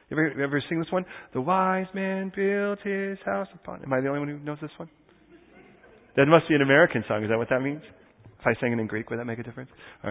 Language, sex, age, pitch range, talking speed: English, male, 30-49, 130-195 Hz, 265 wpm